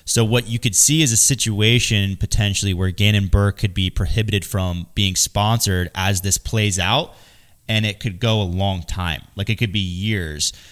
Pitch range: 95-120 Hz